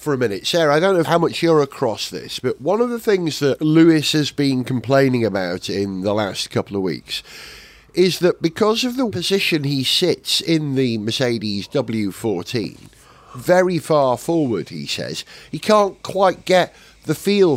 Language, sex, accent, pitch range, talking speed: English, male, British, 130-200 Hz, 180 wpm